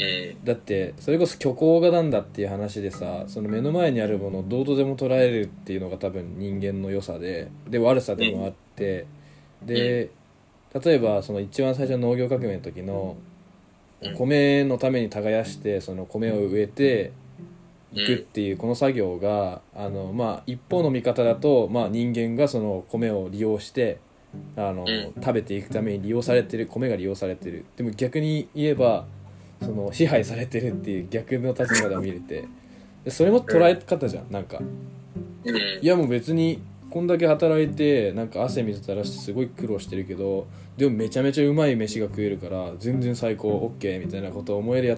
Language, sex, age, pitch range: Japanese, male, 20-39, 100-130 Hz